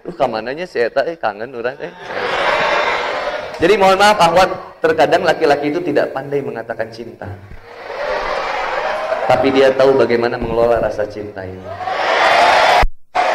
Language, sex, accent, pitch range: Indonesian, male, native, 185-250 Hz